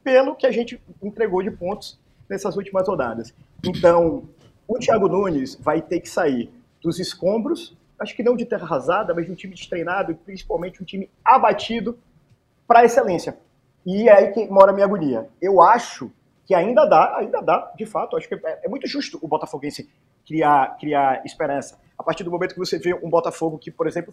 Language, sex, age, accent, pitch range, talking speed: Portuguese, male, 30-49, Brazilian, 155-210 Hz, 190 wpm